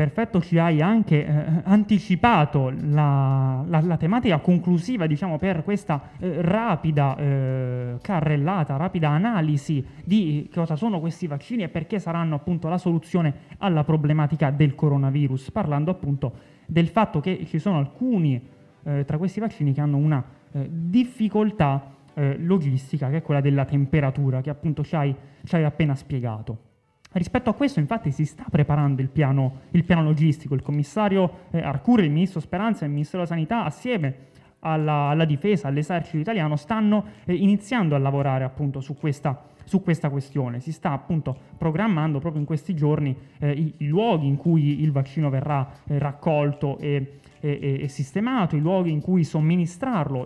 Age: 20-39